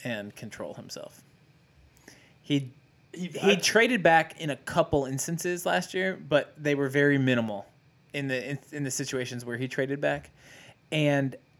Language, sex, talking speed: English, male, 155 wpm